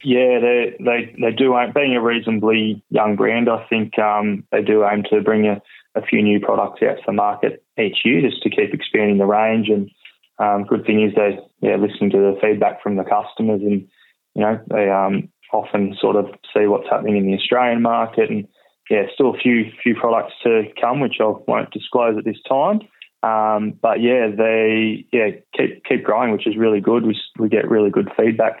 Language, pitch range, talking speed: English, 105-115 Hz, 210 wpm